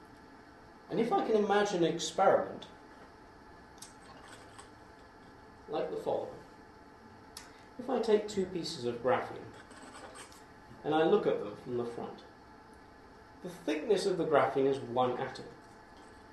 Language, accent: English, British